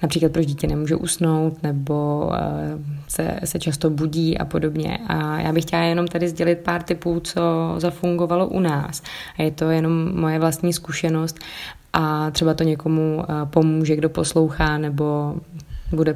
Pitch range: 155-165 Hz